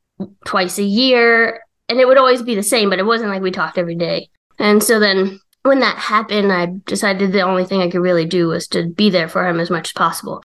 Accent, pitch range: American, 190-250 Hz